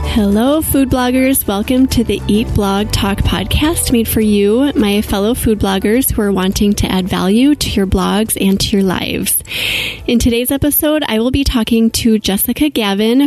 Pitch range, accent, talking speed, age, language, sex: 200-245 Hz, American, 180 wpm, 20-39, English, female